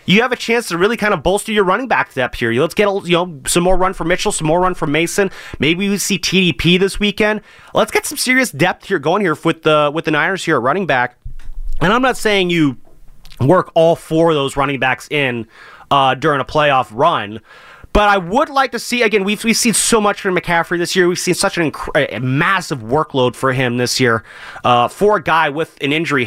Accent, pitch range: American, 155-200 Hz